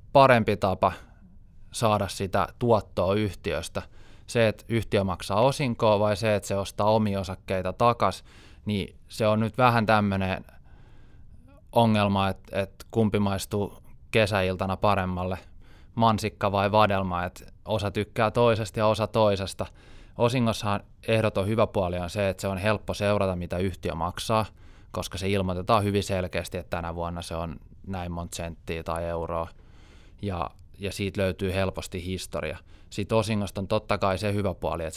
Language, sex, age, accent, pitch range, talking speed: Finnish, male, 20-39, native, 90-105 Hz, 145 wpm